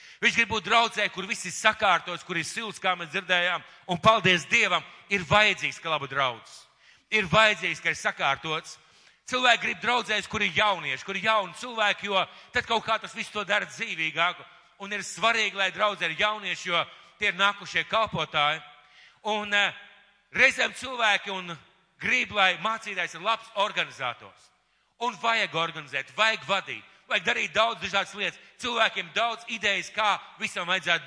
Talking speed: 160 wpm